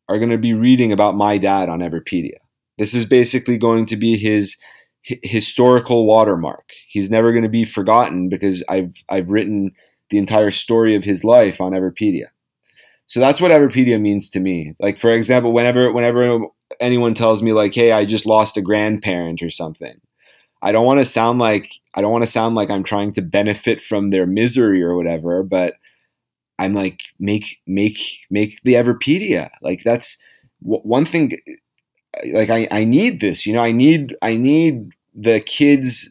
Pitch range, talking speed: 100-115 Hz, 180 wpm